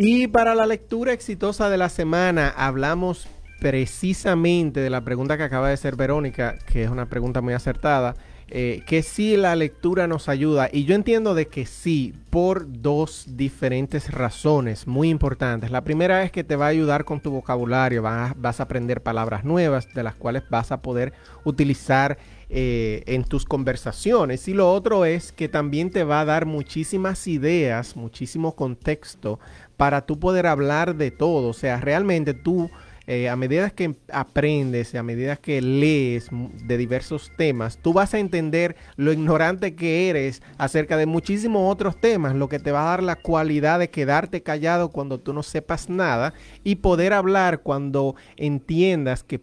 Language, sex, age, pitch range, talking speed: Spanish, male, 30-49, 130-170 Hz, 170 wpm